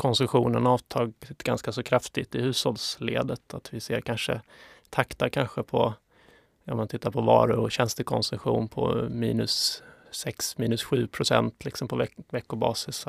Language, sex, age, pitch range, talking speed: Swedish, male, 30-49, 115-130 Hz, 140 wpm